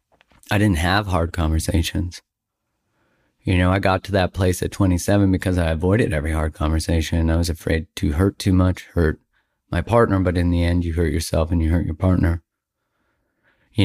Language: English